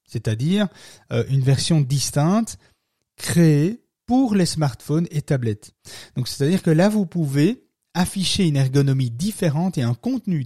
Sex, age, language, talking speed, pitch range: male, 30-49, French, 130 wpm, 125-165 Hz